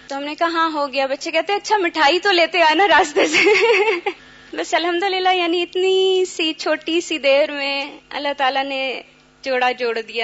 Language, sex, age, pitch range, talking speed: Urdu, female, 20-39, 250-330 Hz, 195 wpm